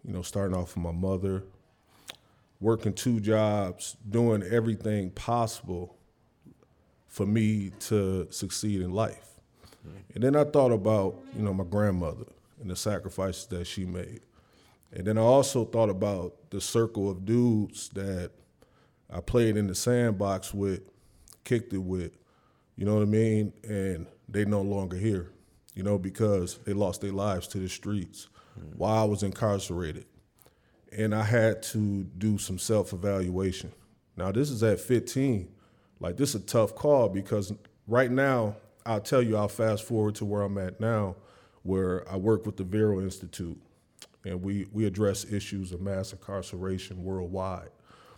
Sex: male